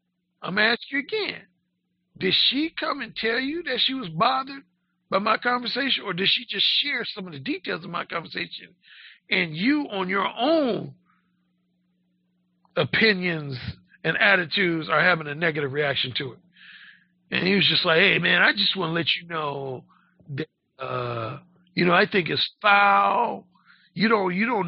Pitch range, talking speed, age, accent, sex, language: 155-205 Hz, 175 wpm, 50-69, American, male, English